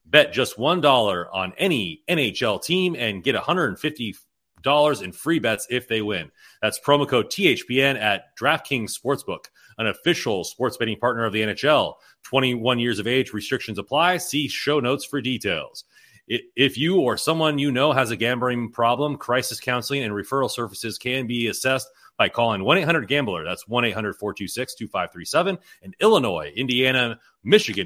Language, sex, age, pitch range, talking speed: English, male, 30-49, 115-155 Hz, 150 wpm